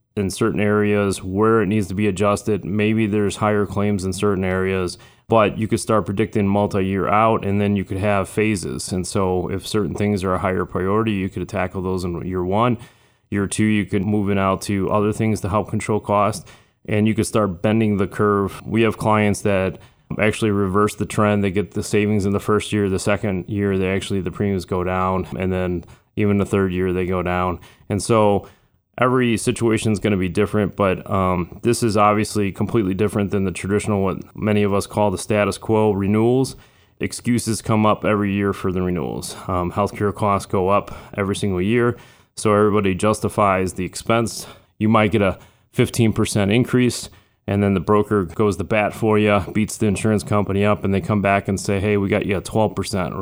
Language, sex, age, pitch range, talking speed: English, male, 20-39, 95-110 Hz, 205 wpm